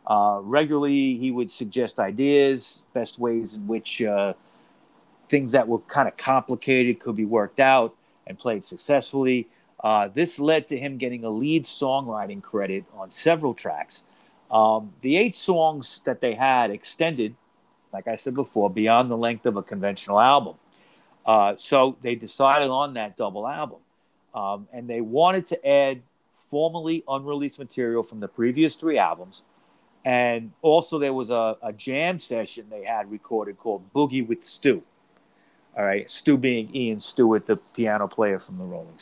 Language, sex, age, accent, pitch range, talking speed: English, male, 40-59, American, 110-145 Hz, 160 wpm